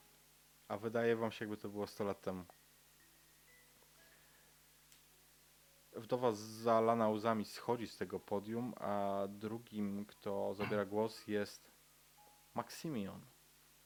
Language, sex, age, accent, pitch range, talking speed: Polish, male, 20-39, native, 105-130 Hz, 110 wpm